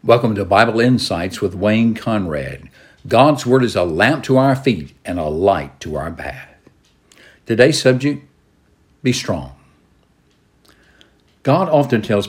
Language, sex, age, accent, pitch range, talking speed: English, male, 60-79, American, 100-130 Hz, 135 wpm